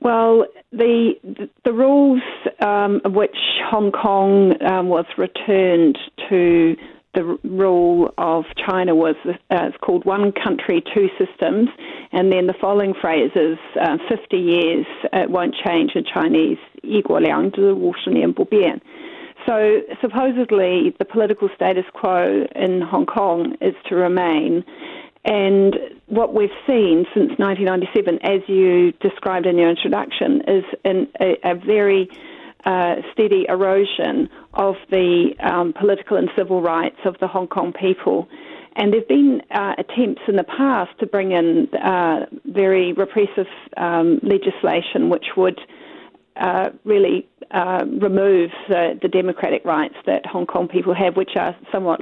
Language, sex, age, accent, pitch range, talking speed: English, female, 40-59, Australian, 180-245 Hz, 135 wpm